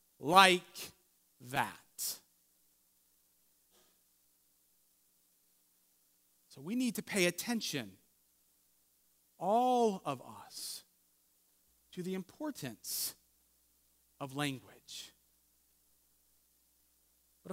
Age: 40-59